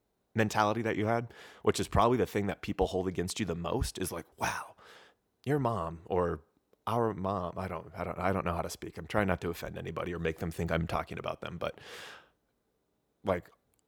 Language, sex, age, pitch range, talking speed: English, male, 30-49, 90-120 Hz, 215 wpm